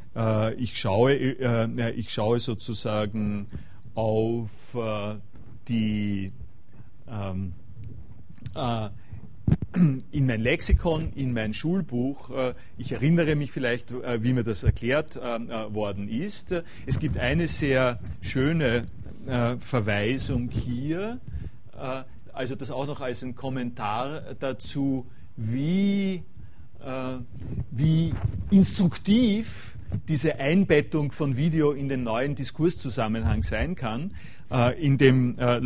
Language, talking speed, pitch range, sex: German, 95 wpm, 110-140 Hz, male